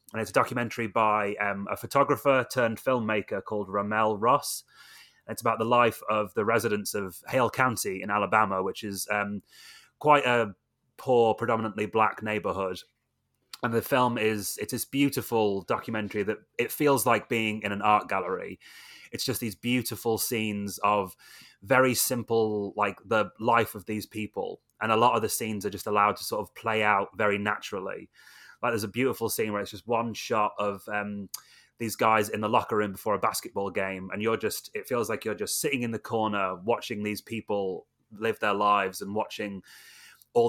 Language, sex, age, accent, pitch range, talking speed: English, male, 30-49, British, 105-115 Hz, 185 wpm